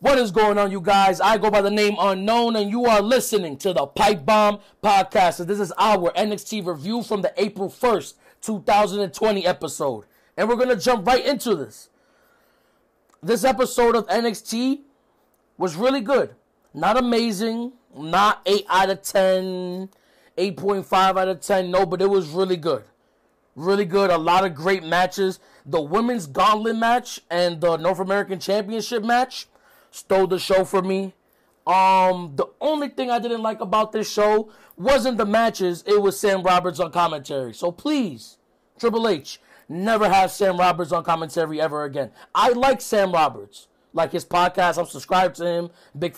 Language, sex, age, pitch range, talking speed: English, male, 20-39, 175-220 Hz, 165 wpm